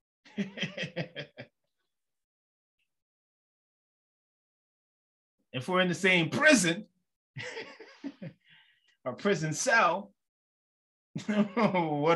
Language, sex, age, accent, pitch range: English, male, 30-49, American, 125-195 Hz